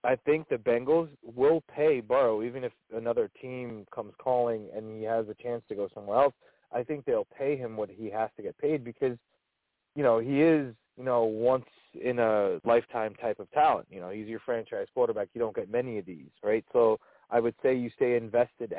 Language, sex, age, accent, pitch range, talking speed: English, male, 30-49, American, 120-155 Hz, 215 wpm